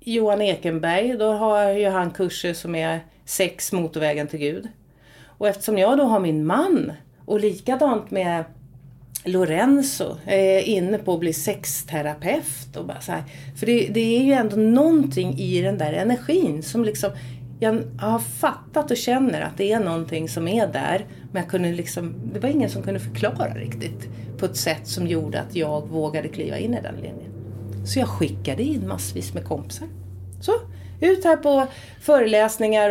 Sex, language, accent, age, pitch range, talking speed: female, Swedish, native, 40-59, 150-220 Hz, 175 wpm